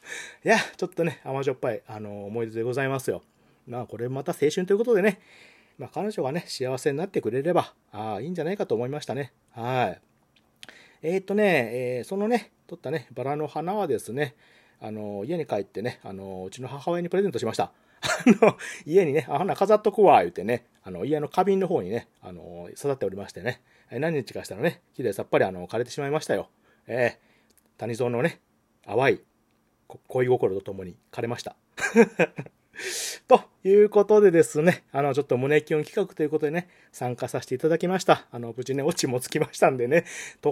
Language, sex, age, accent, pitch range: Japanese, male, 40-59, native, 125-185 Hz